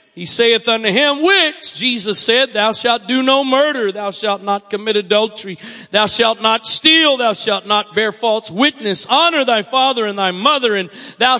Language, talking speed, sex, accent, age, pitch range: English, 185 wpm, male, American, 40-59, 195-265 Hz